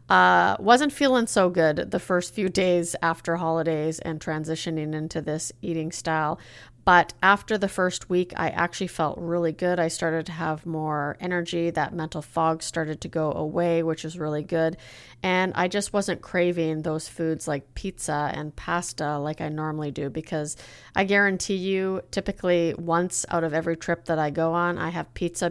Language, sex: English, female